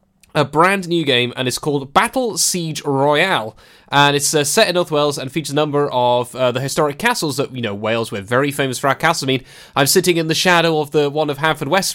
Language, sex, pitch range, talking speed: English, male, 140-195 Hz, 245 wpm